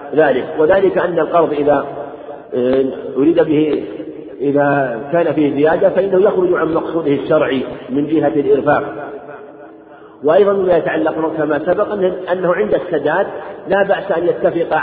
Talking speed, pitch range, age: 125 wpm, 150-175 Hz, 50-69